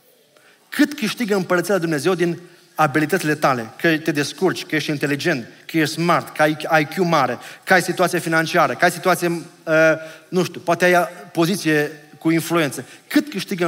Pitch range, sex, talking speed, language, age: 155-190 Hz, male, 165 wpm, Romanian, 30-49